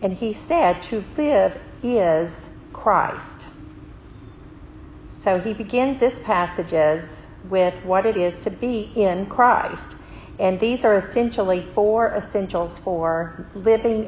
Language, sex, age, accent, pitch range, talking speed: English, female, 50-69, American, 170-215 Hz, 120 wpm